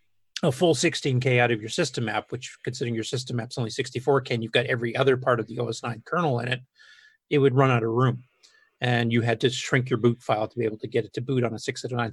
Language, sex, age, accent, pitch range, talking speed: English, male, 40-59, American, 120-135 Hz, 260 wpm